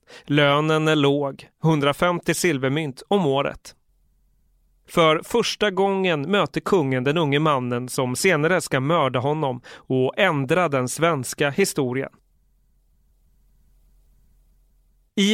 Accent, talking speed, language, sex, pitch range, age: native, 100 wpm, Swedish, male, 140-175 Hz, 30-49